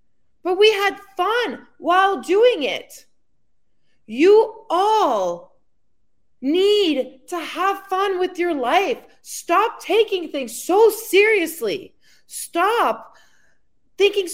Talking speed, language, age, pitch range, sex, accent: 95 wpm, English, 30-49, 285-400 Hz, female, American